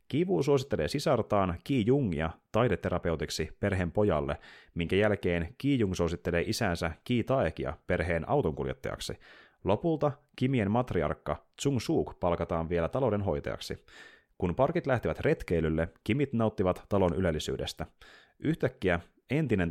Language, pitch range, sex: Finnish, 85-120 Hz, male